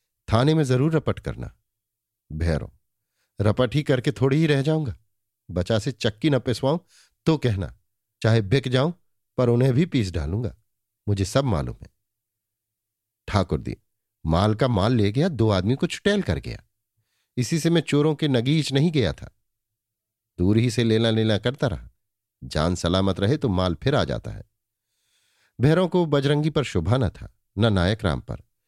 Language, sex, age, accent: Hindi, male, 50-69, native